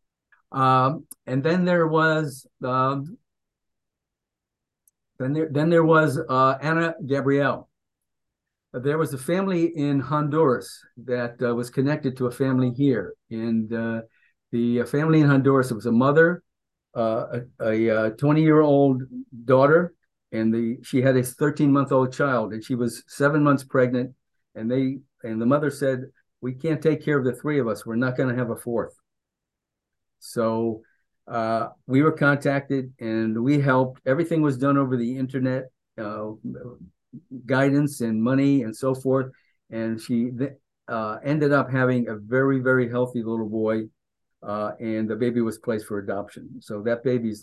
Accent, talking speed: American, 155 wpm